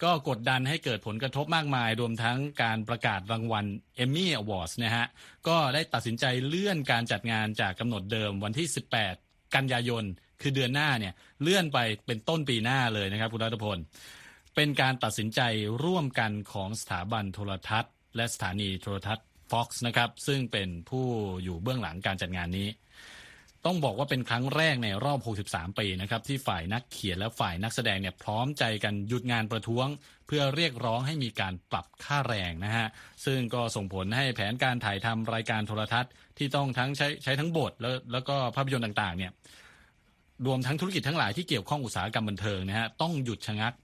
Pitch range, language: 105-135 Hz, Thai